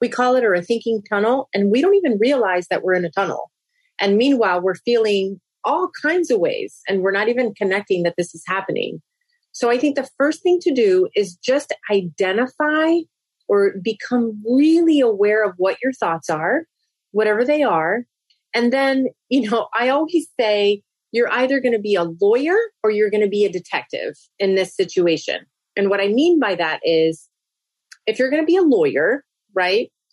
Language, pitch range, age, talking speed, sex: English, 195-280 Hz, 30-49, 190 wpm, female